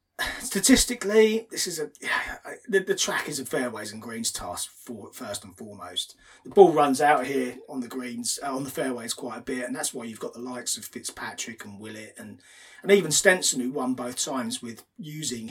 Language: English